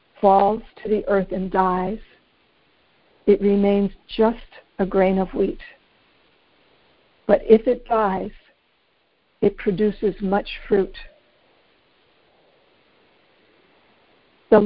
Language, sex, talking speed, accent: English, female, 90 wpm, American